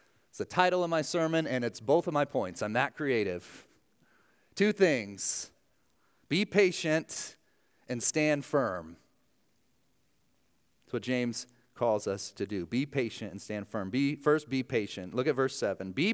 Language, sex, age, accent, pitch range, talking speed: English, male, 30-49, American, 125-190 Hz, 155 wpm